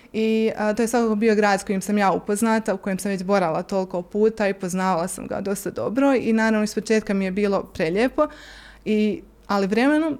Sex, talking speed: female, 205 wpm